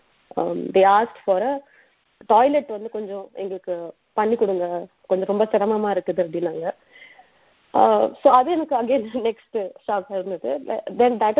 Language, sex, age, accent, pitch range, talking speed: Tamil, female, 20-39, native, 200-255 Hz, 145 wpm